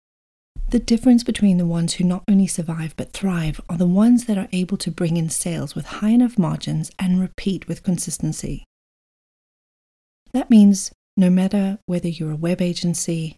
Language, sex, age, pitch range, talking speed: English, female, 30-49, 160-200 Hz, 170 wpm